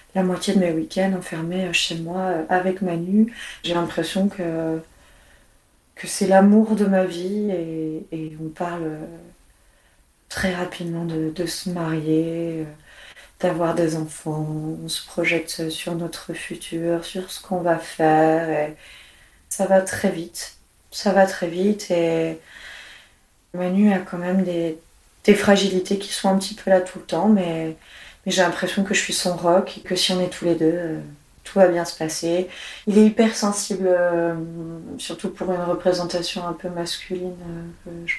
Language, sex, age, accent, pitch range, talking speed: French, female, 30-49, French, 170-190 Hz, 165 wpm